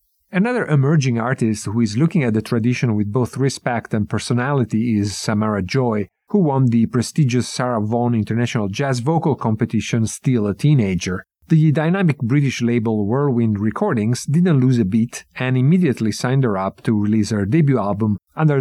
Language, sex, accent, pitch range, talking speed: English, male, Italian, 110-135 Hz, 165 wpm